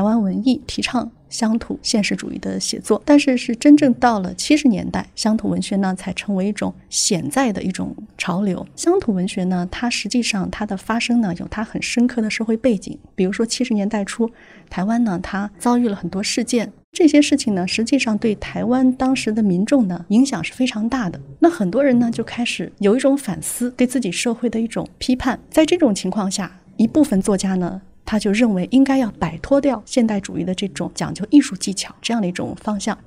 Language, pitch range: Chinese, 190-245 Hz